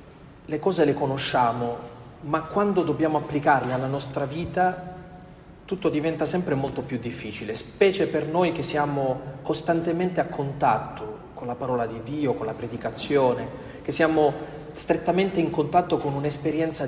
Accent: native